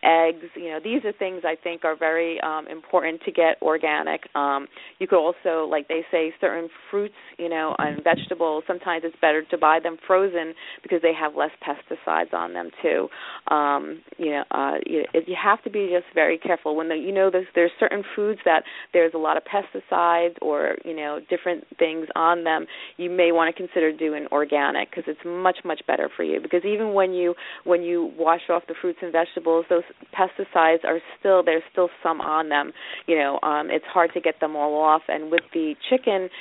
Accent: American